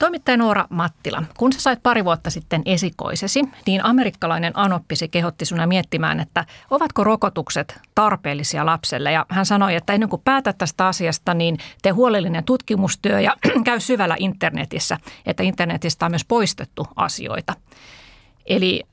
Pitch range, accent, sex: 160-195 Hz, native, female